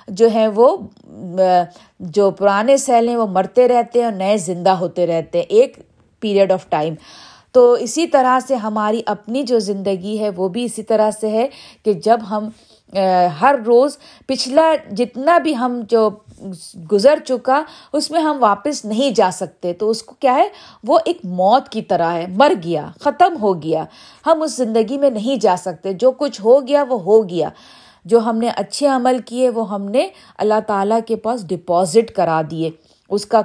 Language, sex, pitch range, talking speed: Urdu, female, 190-250 Hz, 185 wpm